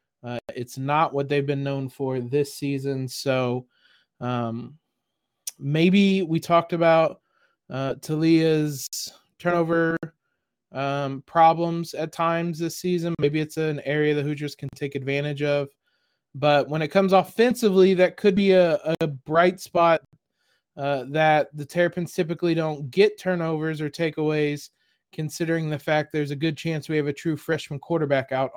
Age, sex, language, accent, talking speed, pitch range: 20-39, male, English, American, 150 wpm, 145-175 Hz